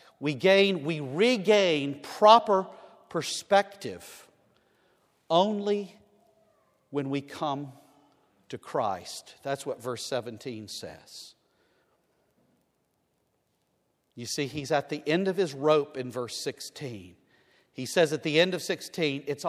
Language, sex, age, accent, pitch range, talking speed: English, male, 50-69, American, 140-200 Hz, 115 wpm